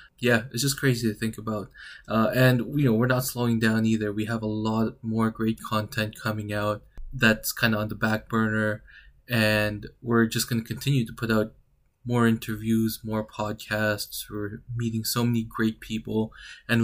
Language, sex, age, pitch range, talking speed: English, male, 20-39, 110-120 Hz, 185 wpm